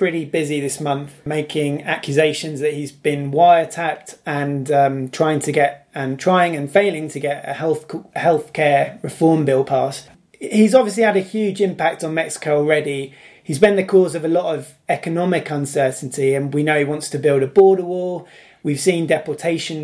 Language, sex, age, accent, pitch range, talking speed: English, male, 20-39, British, 145-185 Hz, 180 wpm